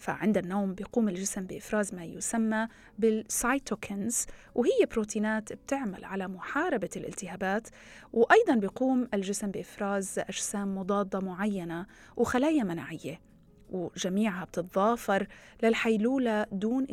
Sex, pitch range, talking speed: female, 185-230 Hz, 95 wpm